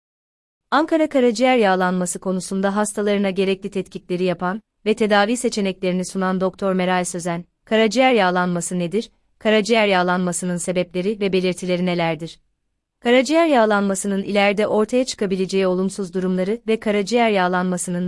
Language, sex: Turkish, female